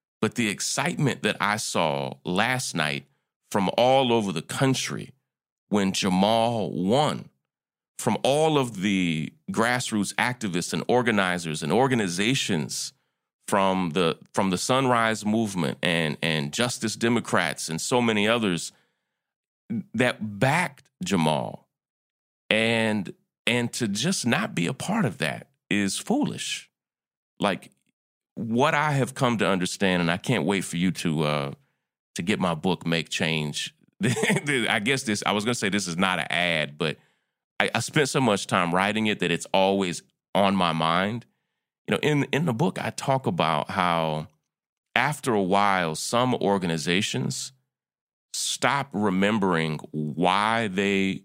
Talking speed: 145 wpm